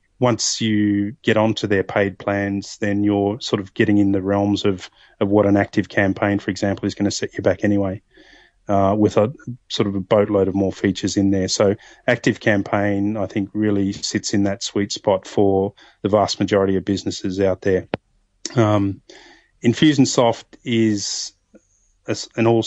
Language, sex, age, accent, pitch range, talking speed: English, male, 30-49, Australian, 100-115 Hz, 175 wpm